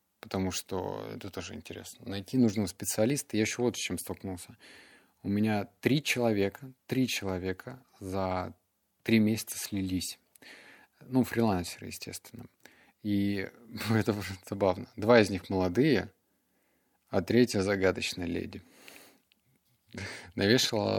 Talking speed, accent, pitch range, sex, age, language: 110 wpm, native, 95-115 Hz, male, 20-39, Russian